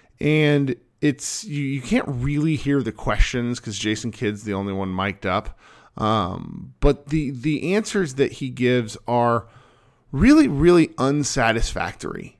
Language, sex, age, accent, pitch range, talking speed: English, male, 40-59, American, 120-155 Hz, 140 wpm